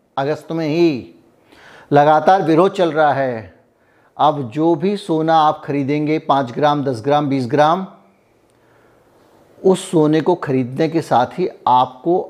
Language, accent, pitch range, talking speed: Hindi, native, 130-160 Hz, 135 wpm